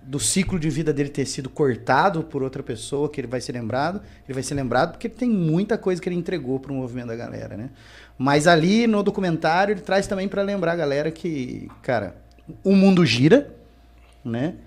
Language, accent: Portuguese, Brazilian